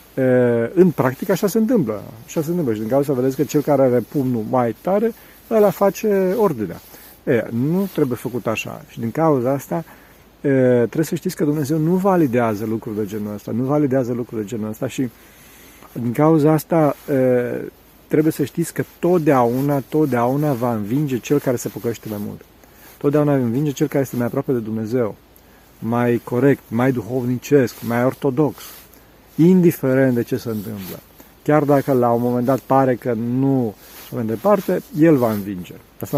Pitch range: 120-150 Hz